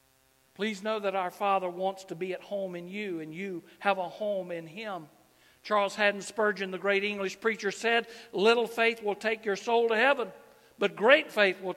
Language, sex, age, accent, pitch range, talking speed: English, male, 60-79, American, 130-190 Hz, 200 wpm